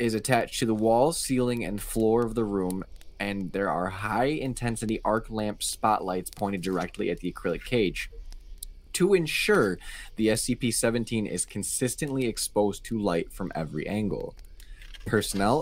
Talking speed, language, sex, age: 145 wpm, English, male, 20-39